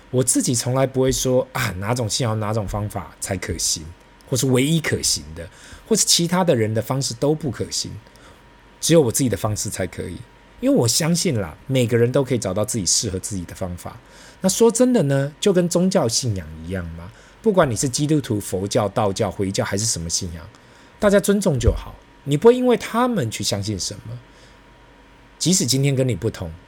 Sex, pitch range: male, 95-135 Hz